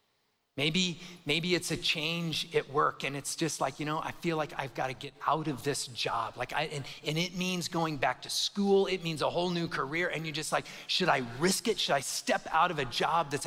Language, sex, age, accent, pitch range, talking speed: English, male, 30-49, American, 140-180 Hz, 250 wpm